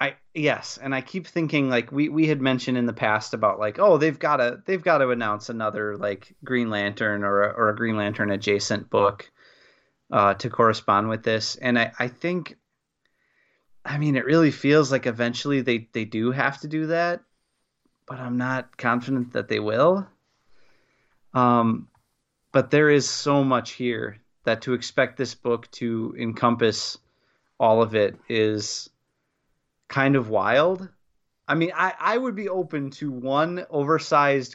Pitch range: 110-140 Hz